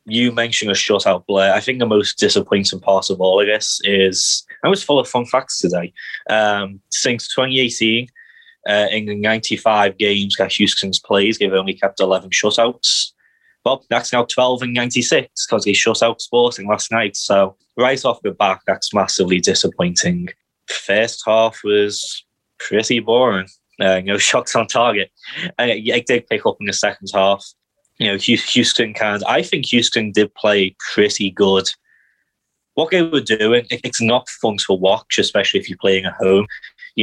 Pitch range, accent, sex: 100-120 Hz, British, male